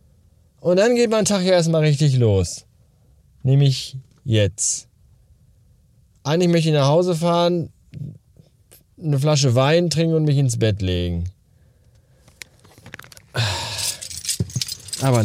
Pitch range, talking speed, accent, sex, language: 105-140 Hz, 105 wpm, German, male, German